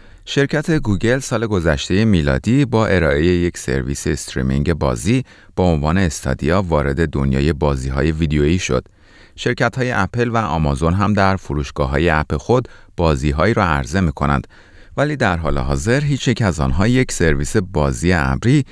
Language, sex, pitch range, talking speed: Persian, male, 70-105 Hz, 145 wpm